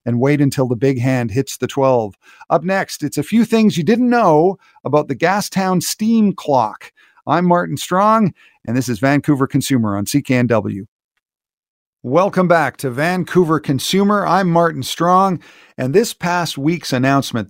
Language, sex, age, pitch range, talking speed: English, male, 50-69, 125-180 Hz, 160 wpm